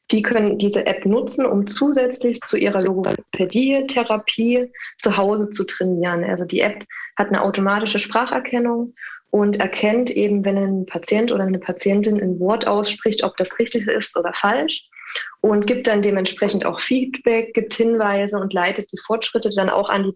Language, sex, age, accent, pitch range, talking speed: German, female, 20-39, German, 195-230 Hz, 165 wpm